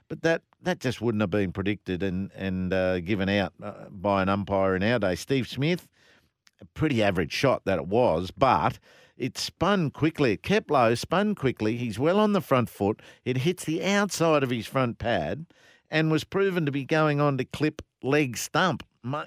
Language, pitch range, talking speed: English, 110-150 Hz, 195 wpm